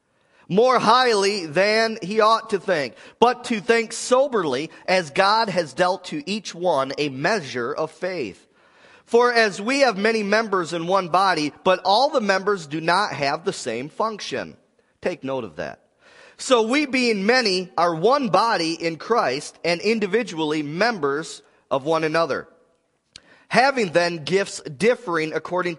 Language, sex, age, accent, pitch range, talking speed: English, male, 40-59, American, 165-225 Hz, 150 wpm